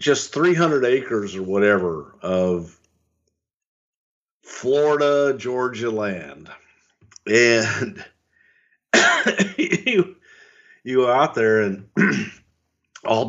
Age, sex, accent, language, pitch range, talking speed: 50-69, male, American, English, 95-130 Hz, 80 wpm